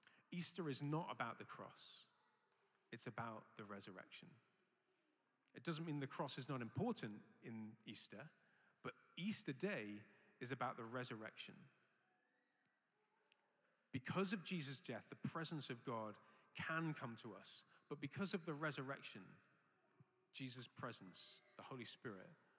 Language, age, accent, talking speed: English, 30-49, British, 130 wpm